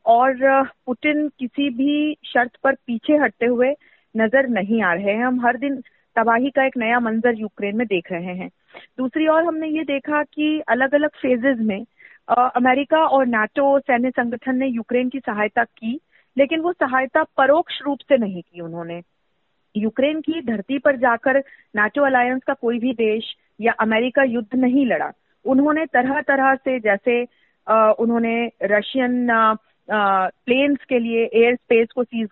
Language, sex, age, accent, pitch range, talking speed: Hindi, female, 30-49, native, 220-275 Hz, 165 wpm